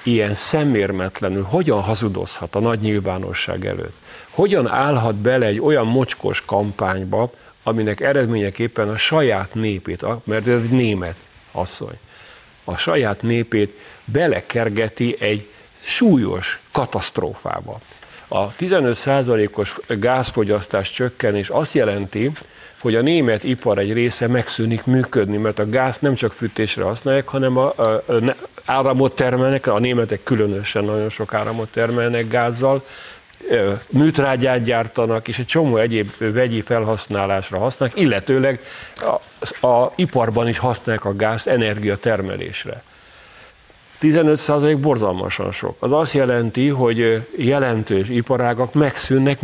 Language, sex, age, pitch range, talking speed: Hungarian, male, 50-69, 105-130 Hz, 115 wpm